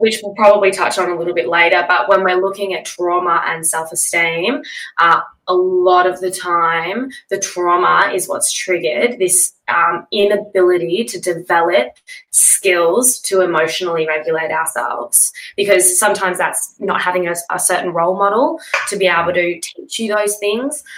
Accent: Australian